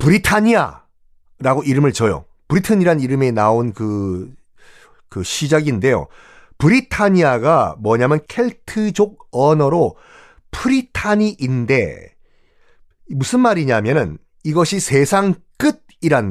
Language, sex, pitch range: Korean, male, 125-205 Hz